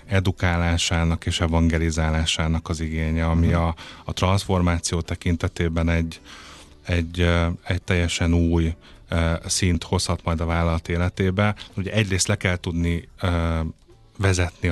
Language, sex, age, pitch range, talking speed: Hungarian, male, 30-49, 85-100 Hz, 100 wpm